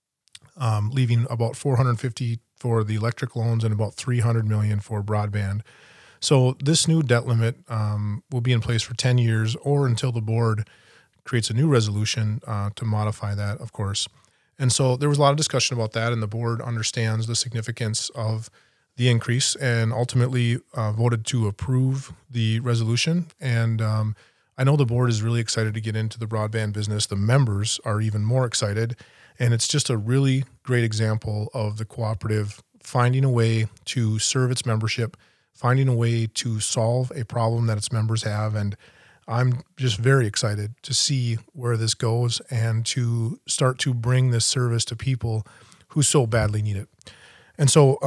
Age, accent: 30-49, American